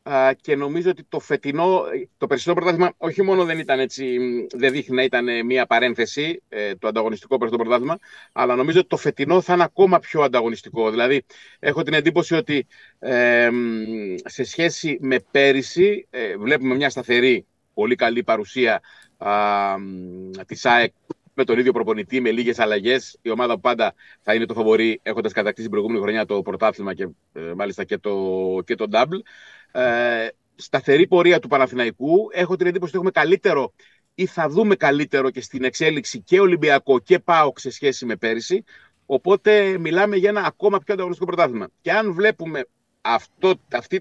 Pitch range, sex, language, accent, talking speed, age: 115-180 Hz, male, Greek, native, 155 wpm, 30-49